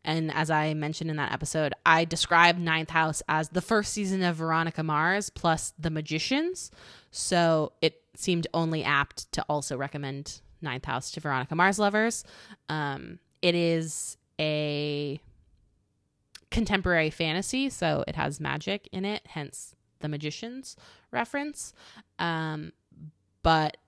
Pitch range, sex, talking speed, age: 155-225 Hz, female, 135 wpm, 20-39